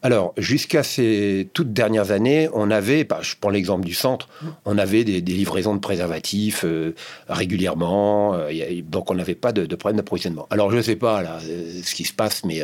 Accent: French